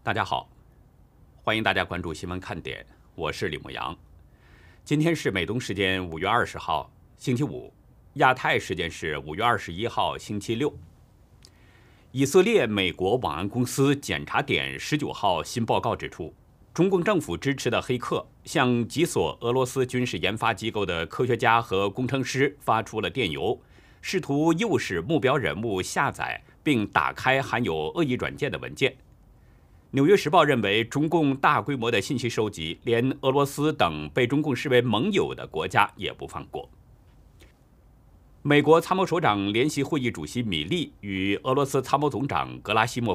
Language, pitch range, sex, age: Chinese, 100-140 Hz, male, 50-69